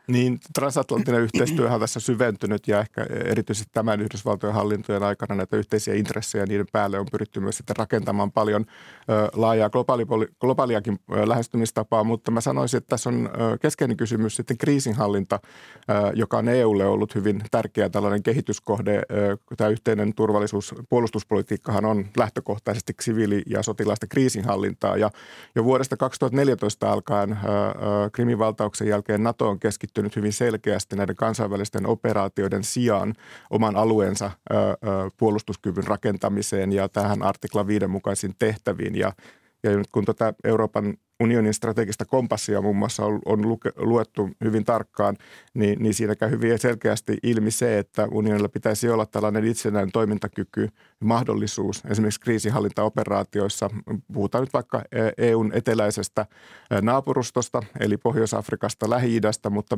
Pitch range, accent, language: 105-115 Hz, native, Finnish